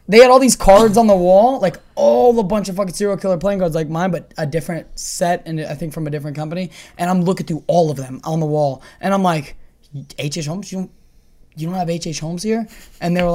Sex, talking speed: male, 250 wpm